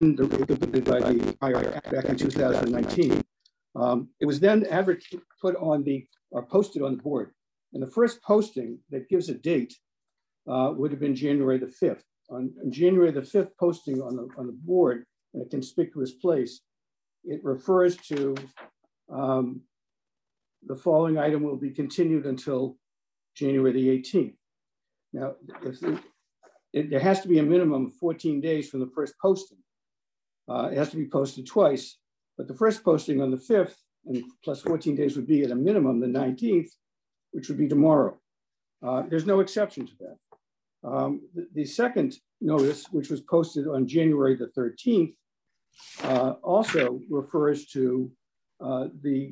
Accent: American